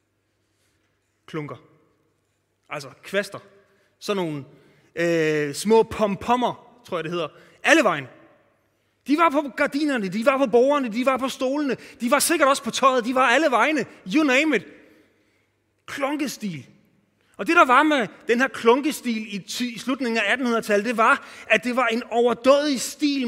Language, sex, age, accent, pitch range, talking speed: Danish, male, 30-49, native, 160-260 Hz, 160 wpm